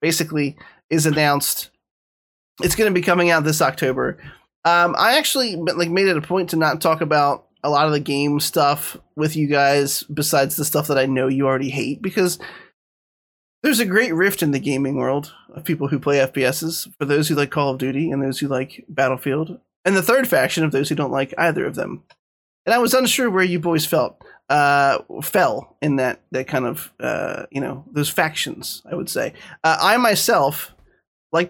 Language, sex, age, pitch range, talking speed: English, male, 20-39, 140-175 Hz, 200 wpm